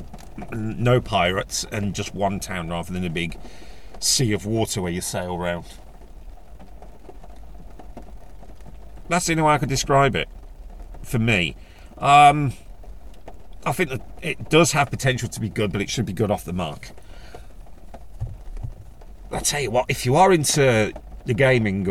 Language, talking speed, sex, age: English, 155 wpm, male, 40-59